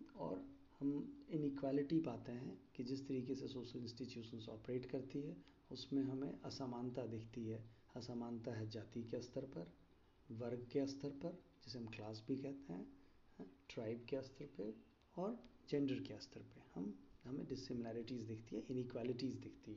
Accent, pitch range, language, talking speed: native, 110-135 Hz, Hindi, 150 wpm